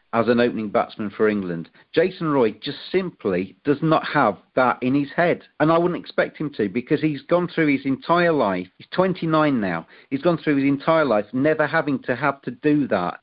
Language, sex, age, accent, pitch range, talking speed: English, male, 40-59, British, 115-150 Hz, 210 wpm